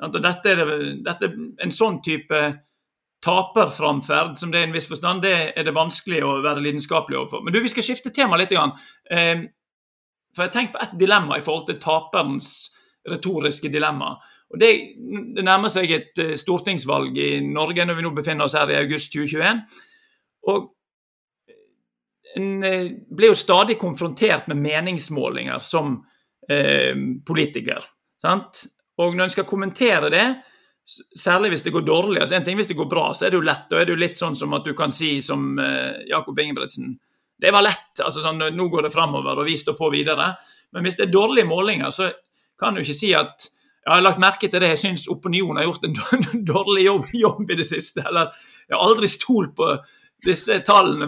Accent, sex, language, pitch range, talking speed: Swedish, male, English, 160-220 Hz, 195 wpm